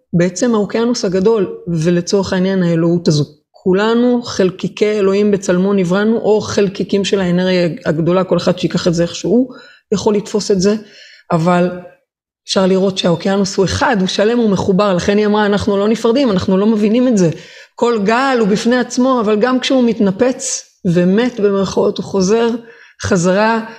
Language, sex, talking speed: Hebrew, female, 155 wpm